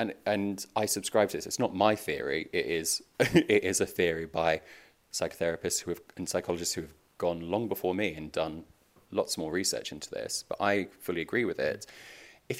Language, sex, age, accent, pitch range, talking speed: English, male, 30-49, British, 85-115 Hz, 200 wpm